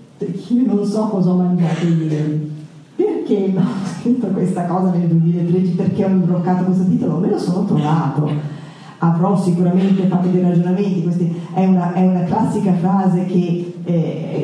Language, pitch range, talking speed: Italian, 165-195 Hz, 155 wpm